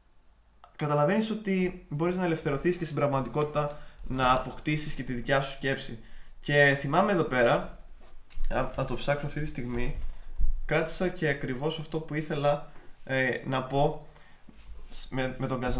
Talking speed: 145 wpm